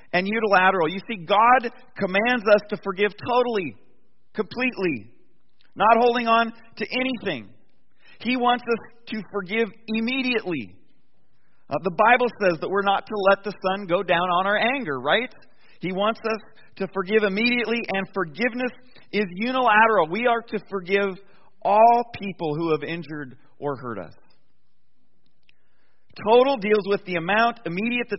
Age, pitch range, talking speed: 40-59, 150-225 Hz, 145 wpm